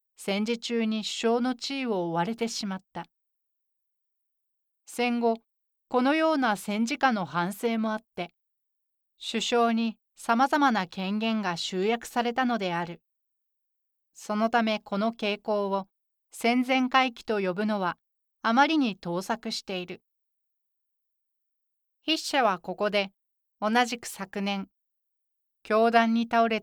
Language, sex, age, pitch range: Japanese, female, 40-59, 195-240 Hz